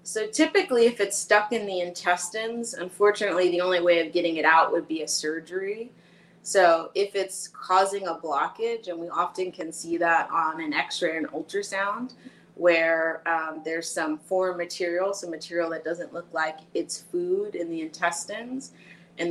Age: 30-49